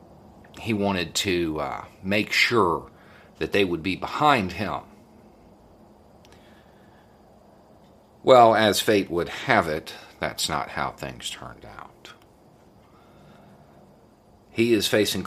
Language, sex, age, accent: English, male, 50-69, American